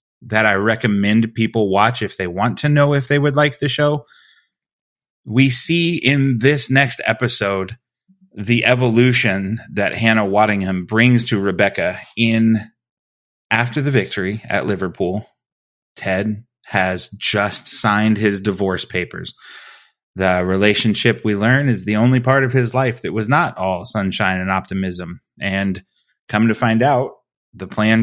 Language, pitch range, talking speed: English, 100-125 Hz, 145 wpm